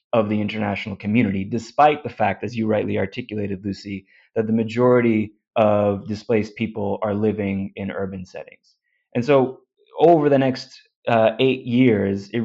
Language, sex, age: English, male, 20-39